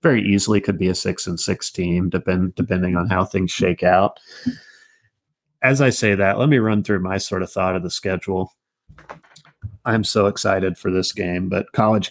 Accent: American